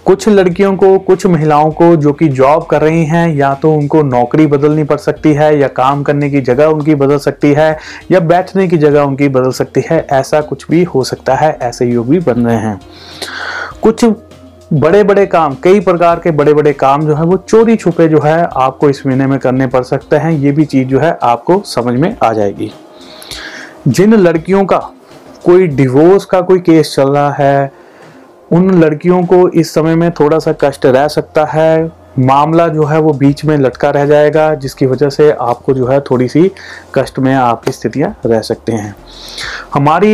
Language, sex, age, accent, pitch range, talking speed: Hindi, male, 30-49, native, 140-170 Hz, 195 wpm